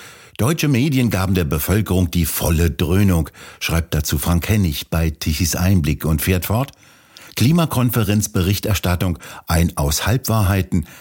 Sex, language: male, German